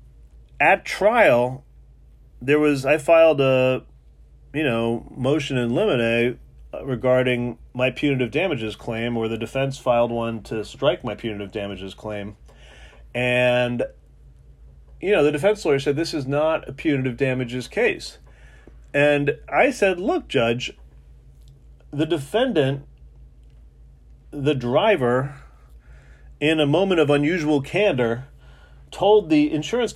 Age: 40-59